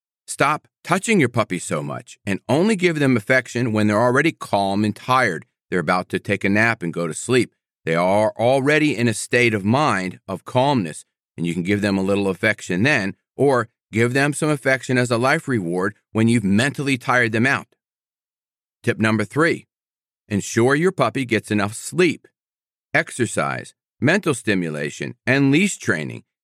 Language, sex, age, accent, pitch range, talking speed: English, male, 40-59, American, 100-145 Hz, 170 wpm